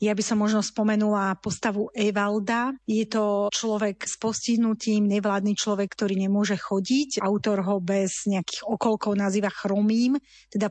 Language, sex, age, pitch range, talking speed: Slovak, female, 30-49, 200-220 Hz, 140 wpm